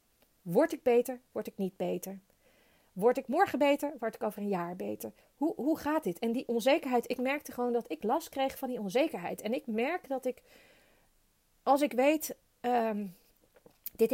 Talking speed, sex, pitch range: 185 wpm, female, 220-270 Hz